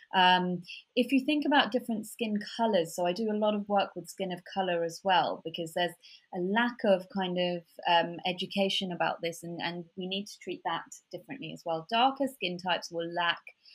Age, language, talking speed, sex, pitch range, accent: 20-39, English, 205 wpm, female, 175-205 Hz, British